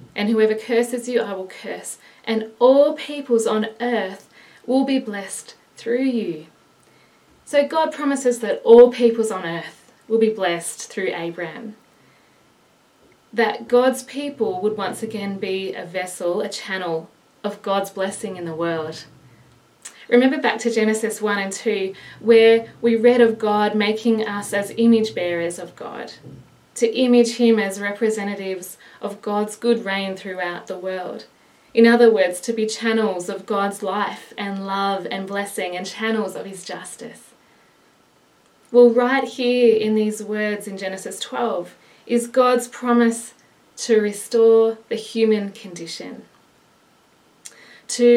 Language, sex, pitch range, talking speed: English, female, 195-235 Hz, 140 wpm